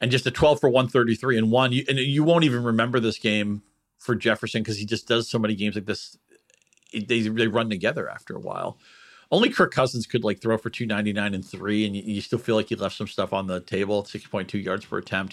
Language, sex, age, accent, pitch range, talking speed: English, male, 40-59, American, 95-120 Hz, 230 wpm